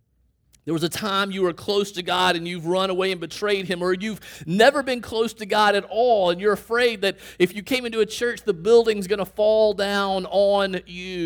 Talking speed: 230 wpm